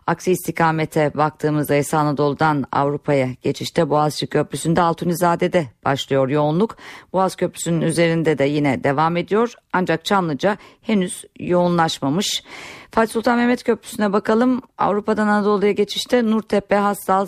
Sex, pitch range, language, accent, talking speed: female, 150-200 Hz, Turkish, native, 115 wpm